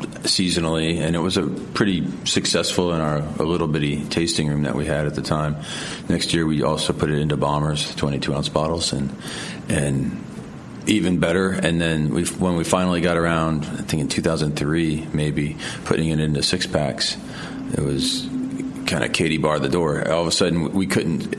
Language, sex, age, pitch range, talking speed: English, male, 40-59, 75-95 Hz, 200 wpm